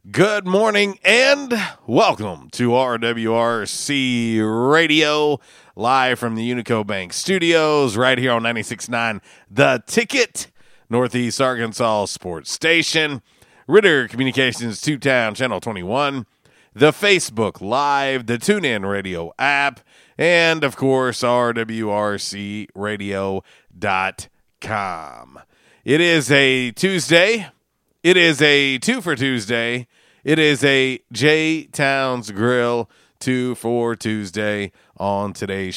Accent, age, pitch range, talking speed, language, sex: American, 40-59, 115-150 Hz, 100 wpm, English, male